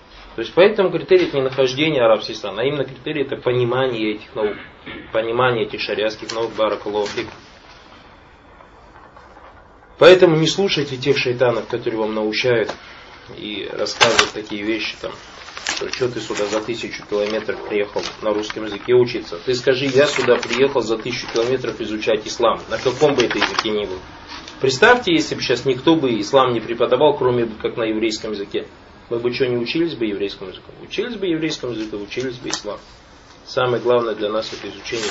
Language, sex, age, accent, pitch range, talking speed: Russian, male, 20-39, native, 110-140 Hz, 165 wpm